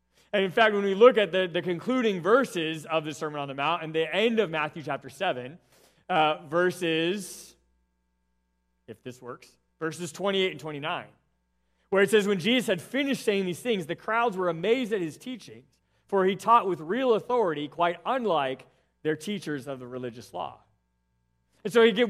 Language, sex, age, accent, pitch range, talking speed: English, male, 30-49, American, 130-205 Hz, 180 wpm